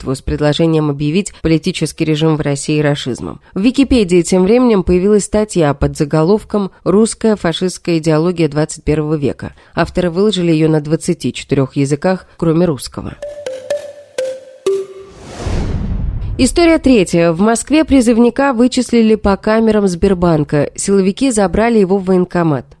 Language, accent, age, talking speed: Russian, native, 30-49, 115 wpm